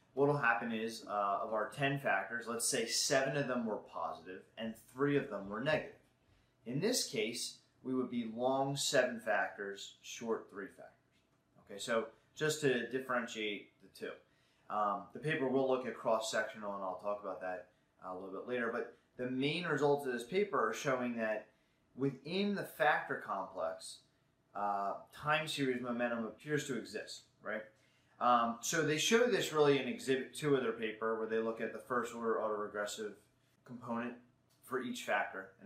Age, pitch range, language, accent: 30-49, 110-140 Hz, English, American